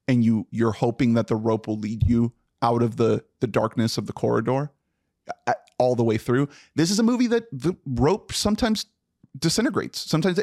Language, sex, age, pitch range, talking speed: English, male, 30-49, 125-170 Hz, 185 wpm